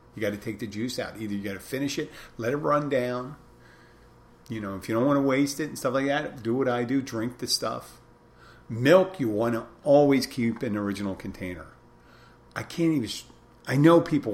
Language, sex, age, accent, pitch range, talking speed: English, male, 50-69, American, 105-135 Hz, 220 wpm